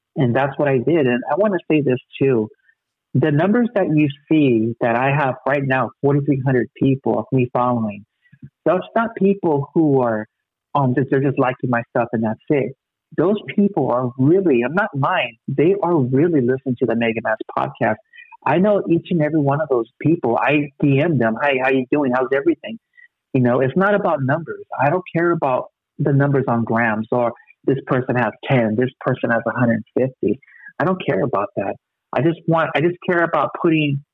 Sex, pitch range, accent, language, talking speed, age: male, 120-150 Hz, American, English, 190 wpm, 50-69